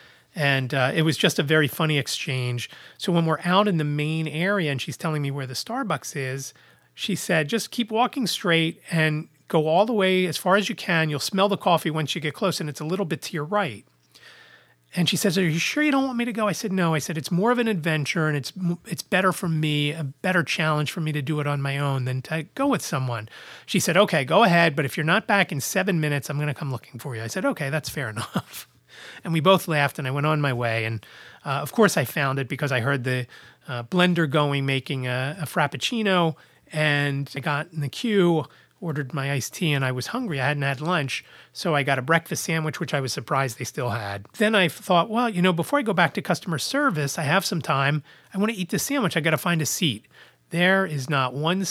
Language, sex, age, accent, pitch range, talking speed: English, male, 30-49, American, 140-185 Hz, 250 wpm